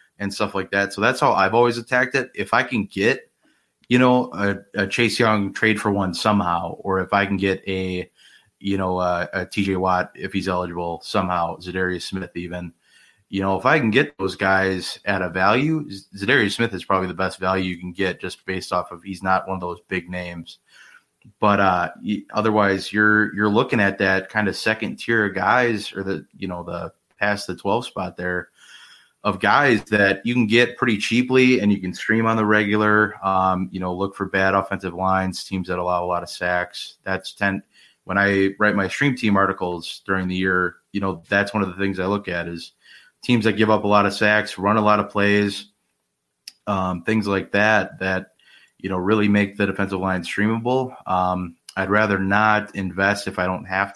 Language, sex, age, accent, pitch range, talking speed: English, male, 20-39, American, 90-105 Hz, 210 wpm